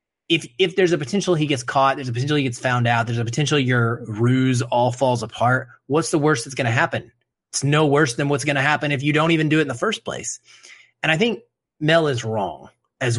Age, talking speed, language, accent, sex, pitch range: 30-49, 250 wpm, English, American, male, 120-160 Hz